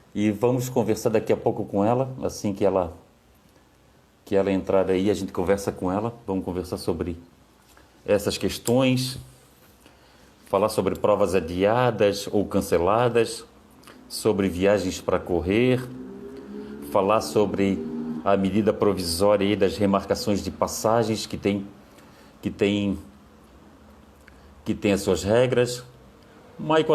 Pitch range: 95-115 Hz